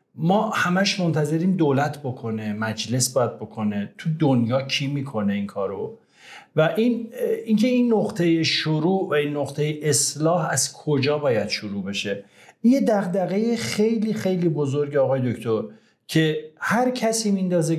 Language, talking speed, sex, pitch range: Persian, 135 wpm, male, 130-190 Hz